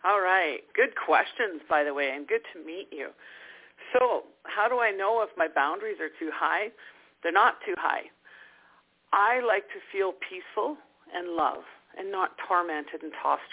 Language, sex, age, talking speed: English, female, 50-69, 175 wpm